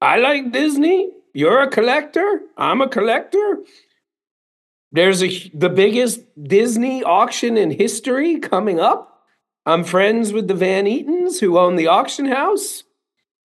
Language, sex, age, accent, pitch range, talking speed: English, male, 40-59, American, 175-260 Hz, 130 wpm